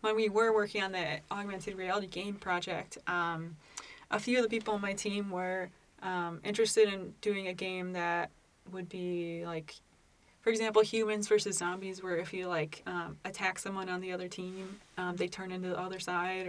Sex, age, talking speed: female, 20-39, 195 wpm